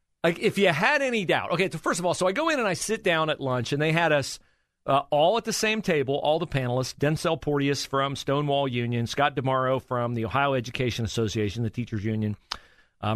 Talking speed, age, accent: 230 wpm, 40-59, American